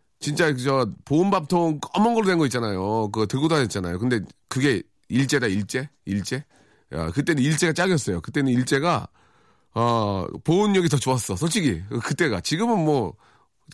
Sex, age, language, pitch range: male, 40-59, Korean, 105-155 Hz